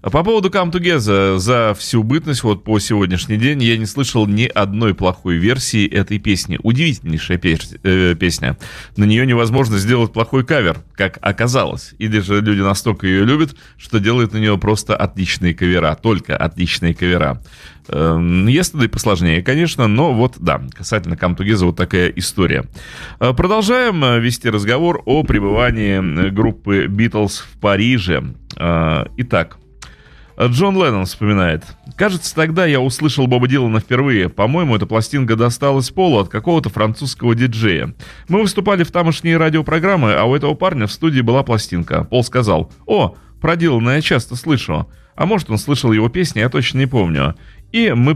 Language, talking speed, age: Russian, 150 wpm, 30-49